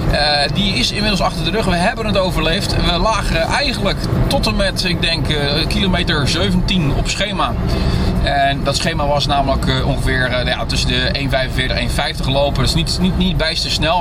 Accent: Dutch